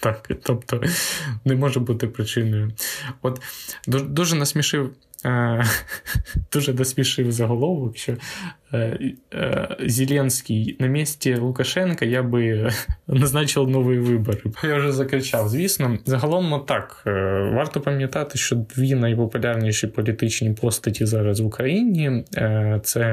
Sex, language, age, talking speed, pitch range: male, Ukrainian, 20-39, 100 wpm, 115-145 Hz